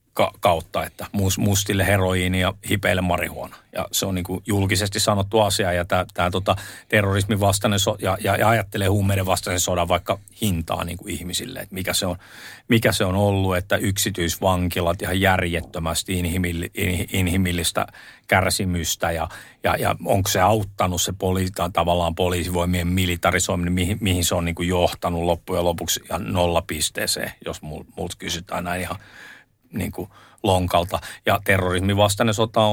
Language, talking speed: Finnish, 135 wpm